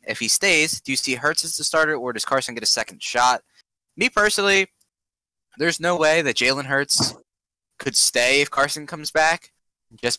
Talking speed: 190 wpm